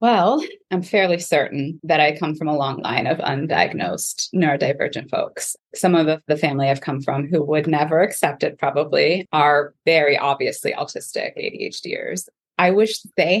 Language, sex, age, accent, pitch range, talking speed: English, female, 20-39, American, 150-185 Hz, 160 wpm